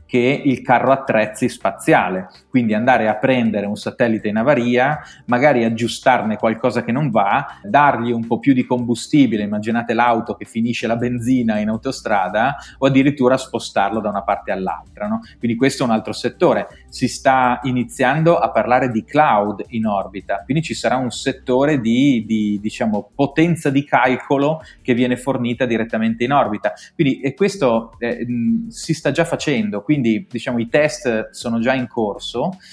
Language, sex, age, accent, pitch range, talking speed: Italian, male, 30-49, native, 110-135 Hz, 165 wpm